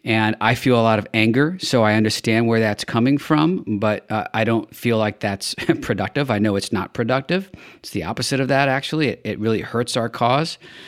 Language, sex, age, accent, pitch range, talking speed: English, male, 40-59, American, 115-140 Hz, 215 wpm